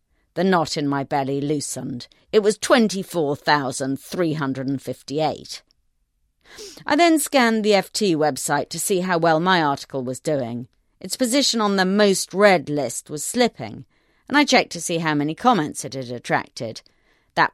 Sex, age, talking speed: female, 40-59, 150 wpm